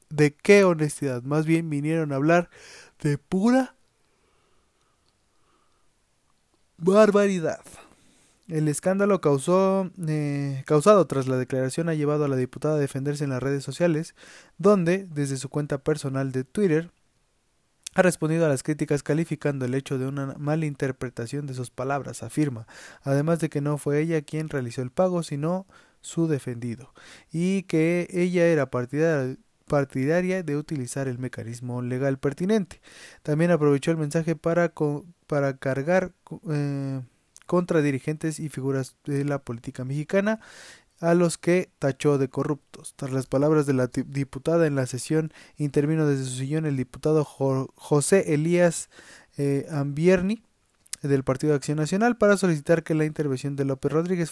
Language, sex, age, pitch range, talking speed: Spanish, male, 20-39, 135-165 Hz, 150 wpm